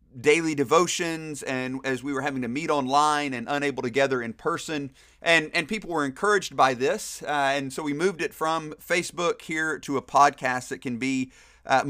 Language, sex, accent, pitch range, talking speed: English, male, American, 130-160 Hz, 195 wpm